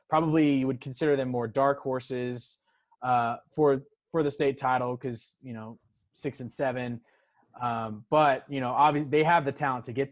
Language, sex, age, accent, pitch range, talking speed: English, male, 20-39, American, 120-140 Hz, 185 wpm